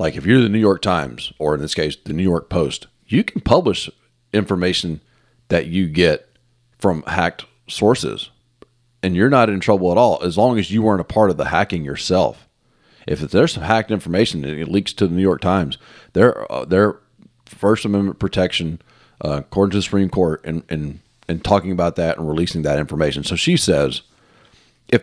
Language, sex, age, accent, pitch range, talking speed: English, male, 40-59, American, 85-105 Hz, 190 wpm